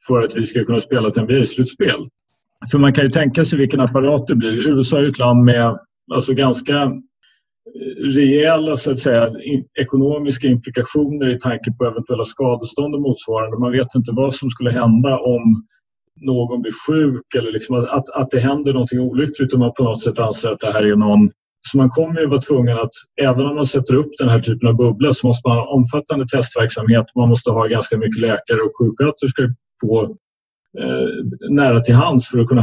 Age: 30-49